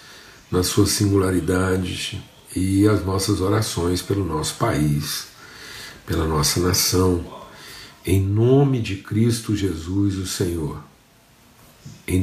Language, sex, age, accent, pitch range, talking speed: Portuguese, male, 50-69, Brazilian, 90-105 Hz, 105 wpm